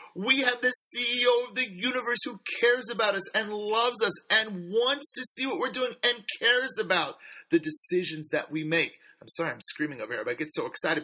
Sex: male